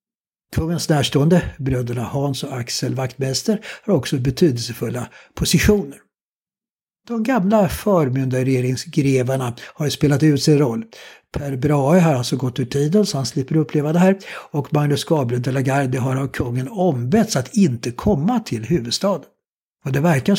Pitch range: 125-165 Hz